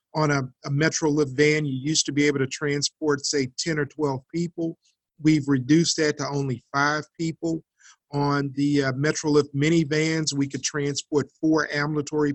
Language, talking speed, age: English, 165 wpm, 50-69